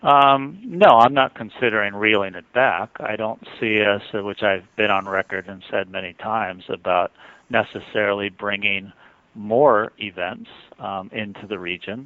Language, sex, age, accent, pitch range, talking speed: English, male, 50-69, American, 95-110 Hz, 150 wpm